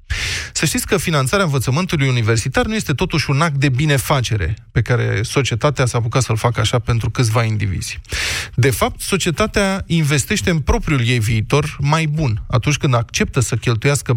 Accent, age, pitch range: native, 20-39, 120-170 Hz